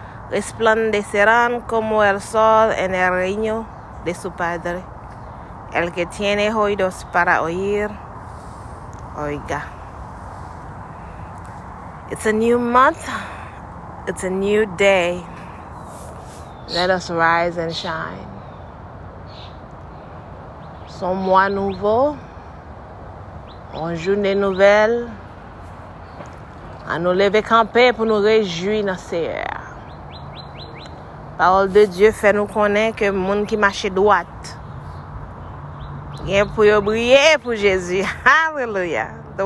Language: English